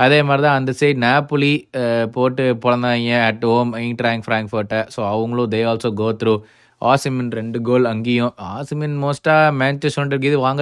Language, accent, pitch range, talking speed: Tamil, native, 115-135 Hz, 175 wpm